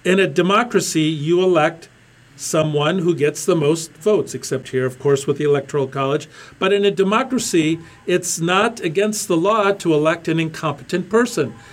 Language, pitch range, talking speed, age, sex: English, 140-175 Hz, 170 wpm, 50-69, male